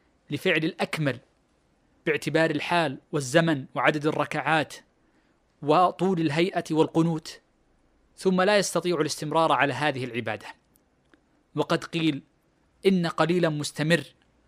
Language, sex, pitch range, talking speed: Arabic, male, 150-175 Hz, 90 wpm